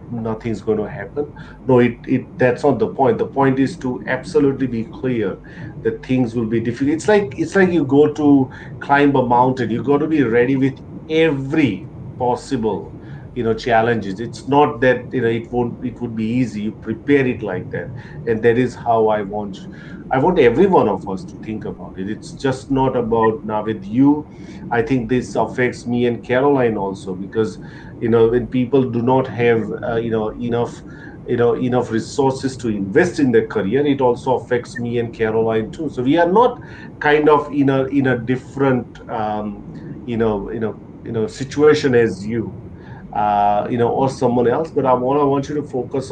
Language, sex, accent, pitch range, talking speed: English, male, Indian, 115-140 Hz, 195 wpm